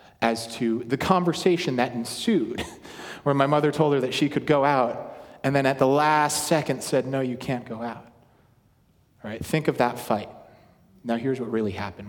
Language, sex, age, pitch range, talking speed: English, male, 30-49, 115-145 Hz, 195 wpm